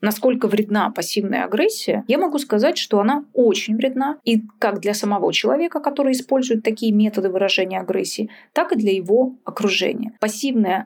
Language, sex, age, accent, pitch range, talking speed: Russian, female, 20-39, native, 205-260 Hz, 155 wpm